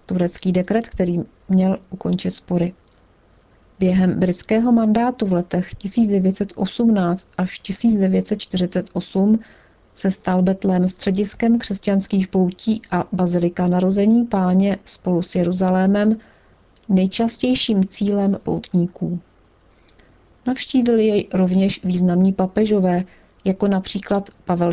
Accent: native